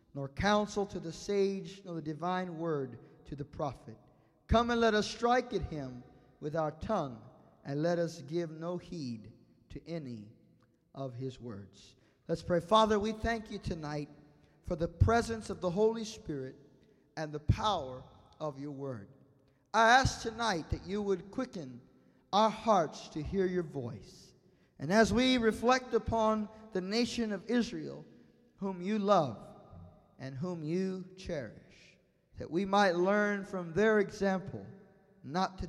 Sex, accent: male, American